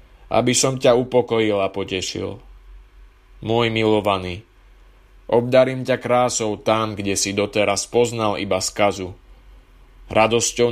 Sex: male